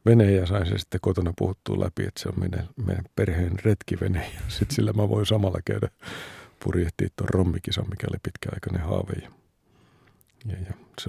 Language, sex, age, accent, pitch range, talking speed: Finnish, male, 50-69, native, 90-105 Hz, 155 wpm